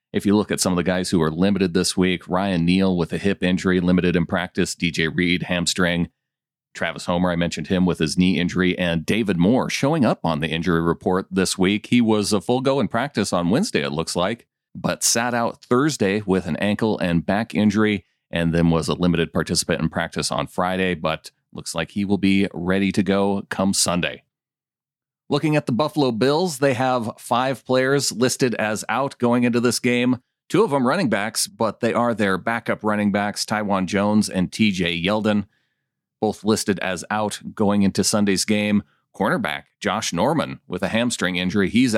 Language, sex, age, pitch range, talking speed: English, male, 40-59, 90-120 Hz, 195 wpm